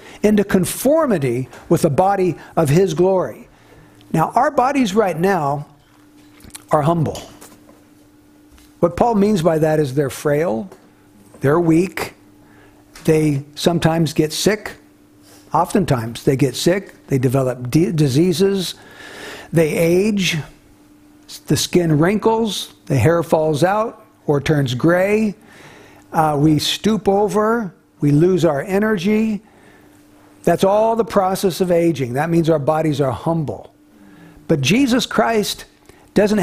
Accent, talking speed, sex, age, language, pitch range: American, 120 wpm, male, 60-79, English, 155-215 Hz